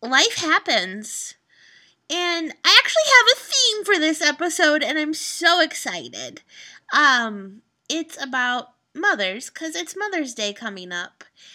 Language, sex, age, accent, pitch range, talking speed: English, female, 20-39, American, 235-335 Hz, 130 wpm